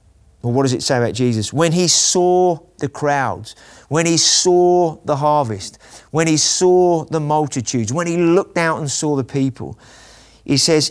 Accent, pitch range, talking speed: British, 115-155 Hz, 170 wpm